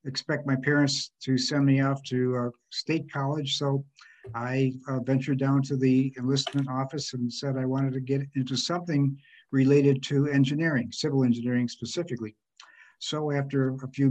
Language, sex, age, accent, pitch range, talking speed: English, male, 60-79, American, 125-140 Hz, 160 wpm